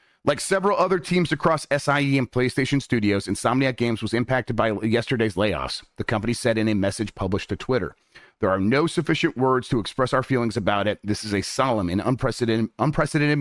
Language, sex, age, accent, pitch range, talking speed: English, male, 30-49, American, 105-130 Hz, 190 wpm